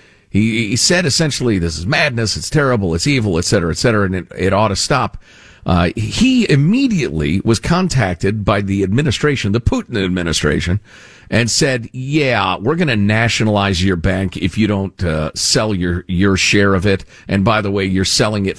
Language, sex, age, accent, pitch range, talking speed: English, male, 50-69, American, 95-140 Hz, 185 wpm